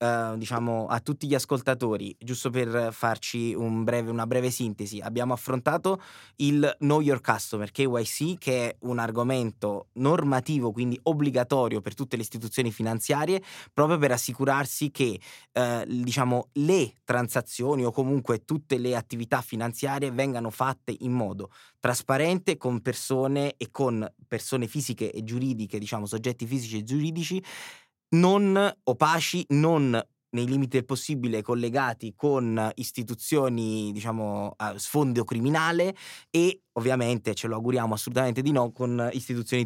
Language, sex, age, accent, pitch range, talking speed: Italian, male, 20-39, native, 115-145 Hz, 135 wpm